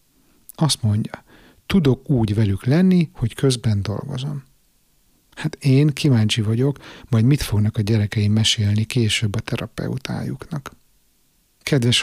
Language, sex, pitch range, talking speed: Hungarian, male, 110-140 Hz, 115 wpm